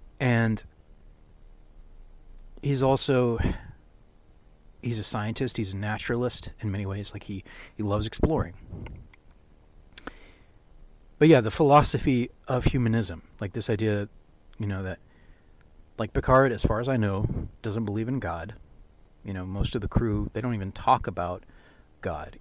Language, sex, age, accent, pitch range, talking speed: English, male, 30-49, American, 90-115 Hz, 140 wpm